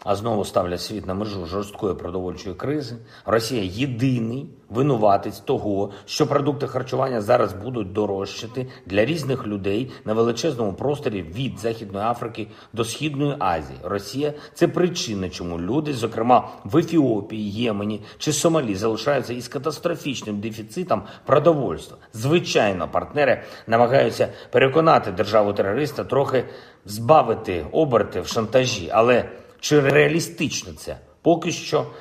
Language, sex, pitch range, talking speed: Ukrainian, male, 105-150 Hz, 120 wpm